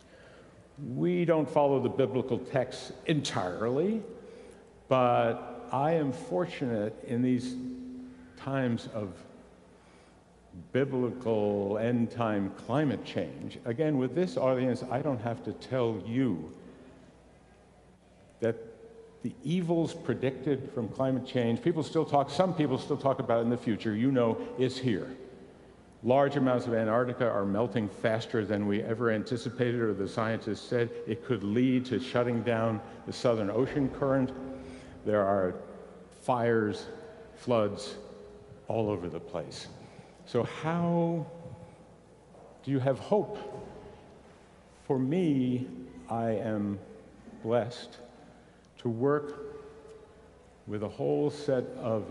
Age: 60-79